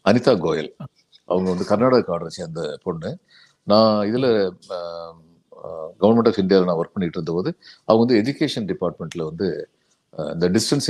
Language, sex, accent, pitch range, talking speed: Tamil, male, native, 95-135 Hz, 130 wpm